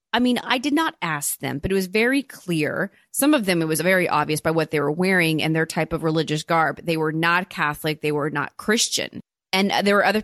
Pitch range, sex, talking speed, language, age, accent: 165-210 Hz, female, 245 wpm, English, 30-49, American